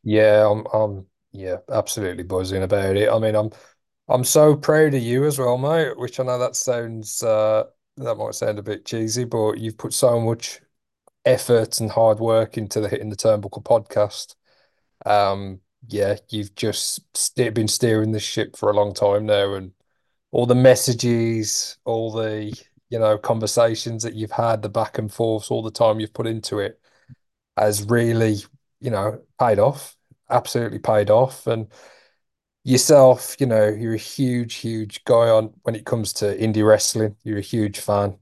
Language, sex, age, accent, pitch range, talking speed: English, male, 20-39, British, 105-125 Hz, 175 wpm